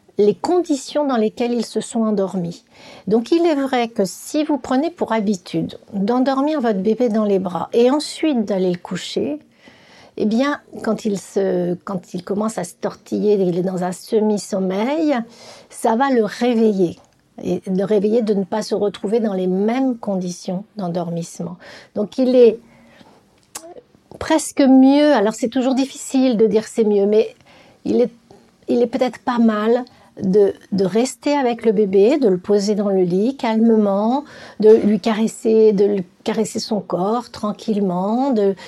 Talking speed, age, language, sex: 170 wpm, 60-79, French, female